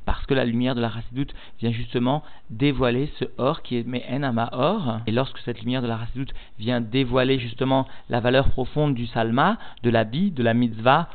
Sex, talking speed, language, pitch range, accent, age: male, 195 wpm, French, 115-135 Hz, French, 40-59